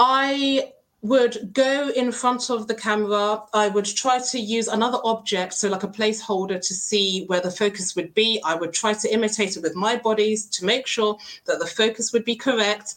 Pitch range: 185-230 Hz